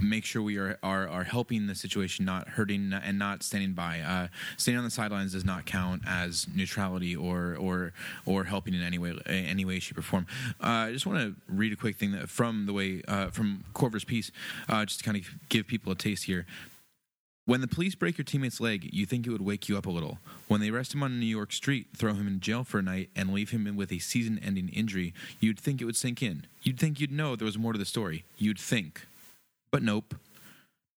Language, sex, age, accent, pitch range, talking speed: English, male, 20-39, American, 95-125 Hz, 235 wpm